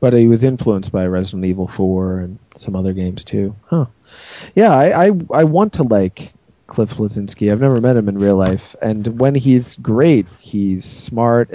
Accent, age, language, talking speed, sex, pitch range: American, 30-49, English, 185 wpm, male, 95-115 Hz